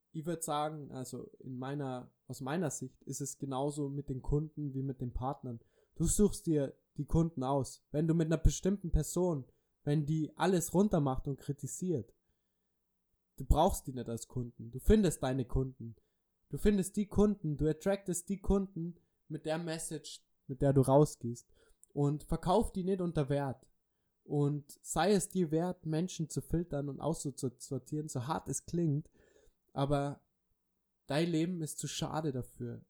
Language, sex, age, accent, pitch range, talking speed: German, male, 20-39, German, 135-165 Hz, 160 wpm